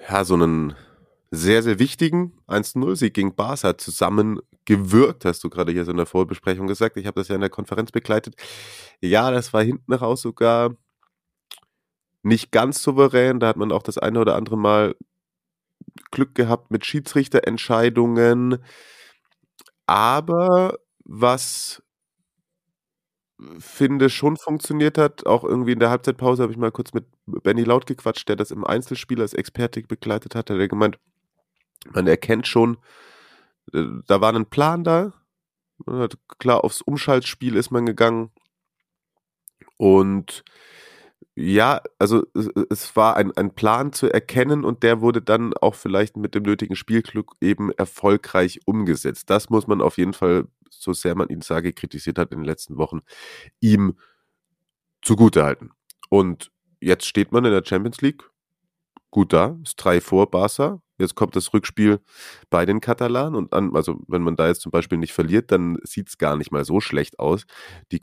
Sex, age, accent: male, 30-49, German